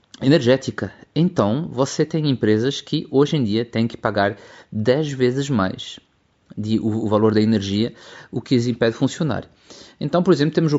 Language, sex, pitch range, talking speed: Portuguese, male, 110-130 Hz, 180 wpm